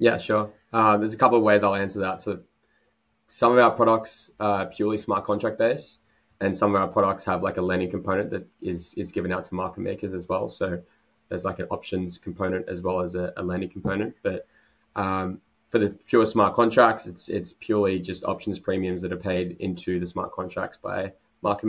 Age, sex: 20-39, male